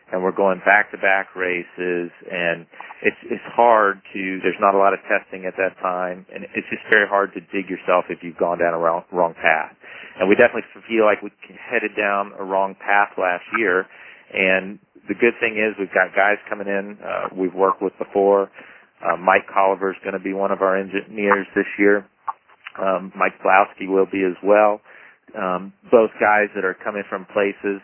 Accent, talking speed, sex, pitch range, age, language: American, 200 wpm, male, 95-105 Hz, 40-59, English